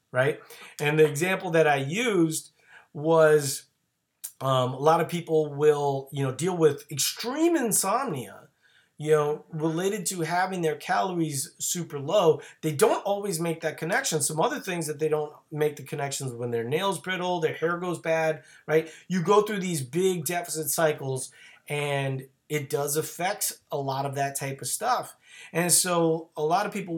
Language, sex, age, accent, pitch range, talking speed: English, male, 30-49, American, 140-165 Hz, 170 wpm